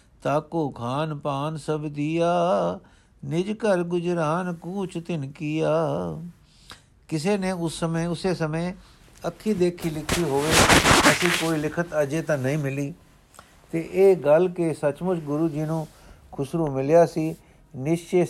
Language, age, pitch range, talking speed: Punjabi, 60-79, 145-170 Hz, 135 wpm